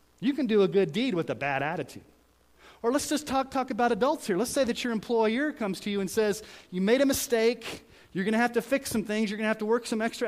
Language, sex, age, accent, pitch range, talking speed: English, male, 30-49, American, 185-245 Hz, 280 wpm